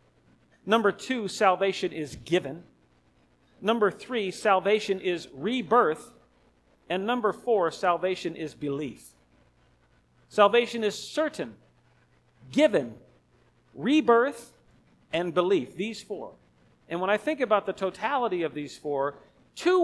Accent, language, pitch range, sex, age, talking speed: American, English, 155-245 Hz, male, 50-69, 110 wpm